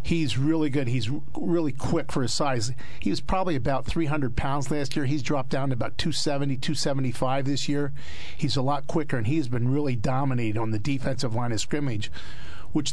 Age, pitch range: 50-69, 125-150 Hz